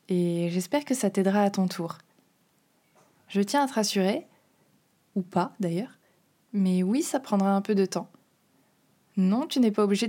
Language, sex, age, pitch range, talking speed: French, female, 20-39, 190-235 Hz, 175 wpm